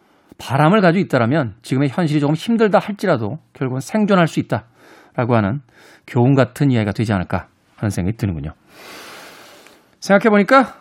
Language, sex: Korean, male